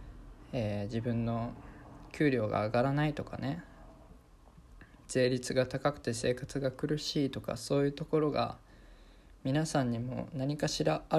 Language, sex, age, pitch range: Japanese, male, 20-39, 115-135 Hz